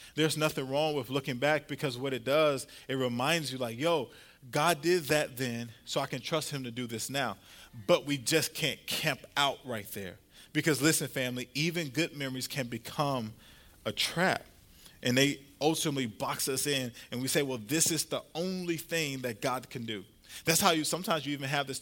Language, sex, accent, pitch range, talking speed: English, male, American, 130-155 Hz, 200 wpm